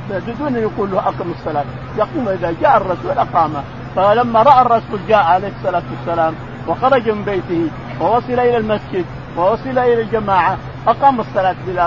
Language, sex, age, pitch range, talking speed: Arabic, male, 50-69, 170-230 Hz, 145 wpm